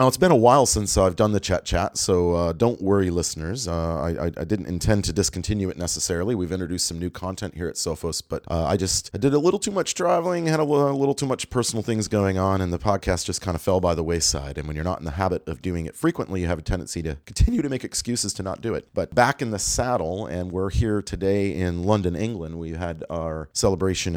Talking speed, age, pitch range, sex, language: 255 wpm, 30-49, 90-110 Hz, male, English